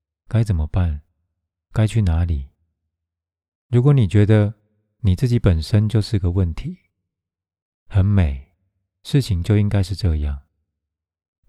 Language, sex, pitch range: Chinese, male, 80-105 Hz